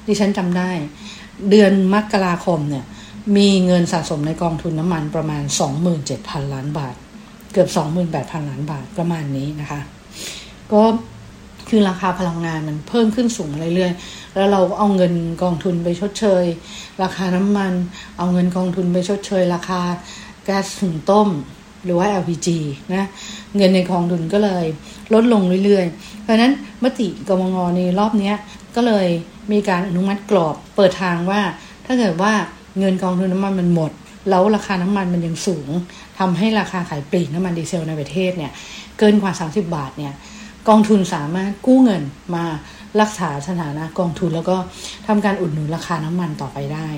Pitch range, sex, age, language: 170-205 Hz, female, 60-79, English